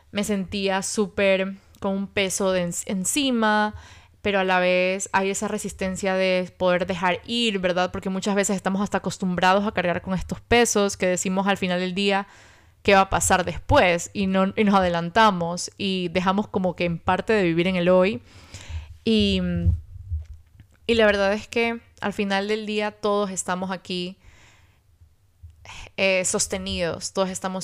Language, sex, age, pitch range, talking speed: Spanish, female, 20-39, 170-195 Hz, 160 wpm